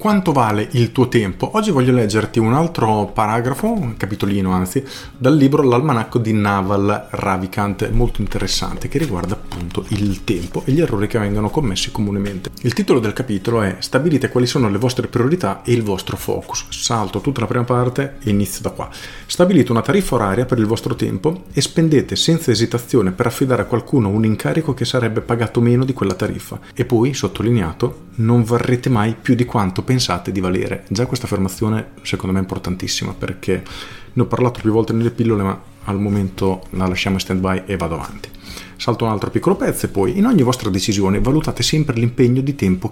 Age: 40-59